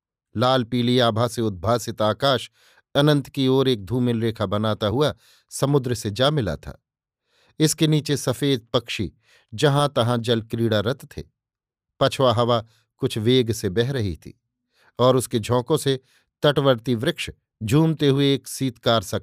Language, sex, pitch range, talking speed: Hindi, male, 115-140 Hz, 150 wpm